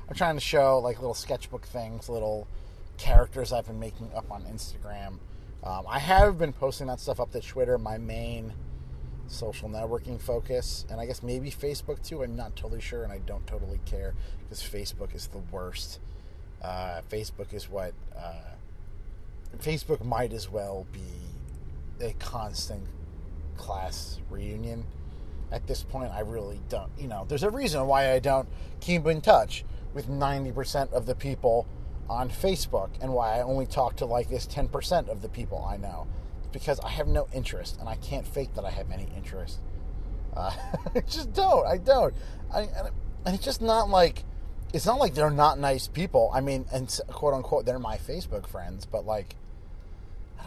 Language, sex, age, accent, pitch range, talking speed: English, male, 30-49, American, 85-130 Hz, 175 wpm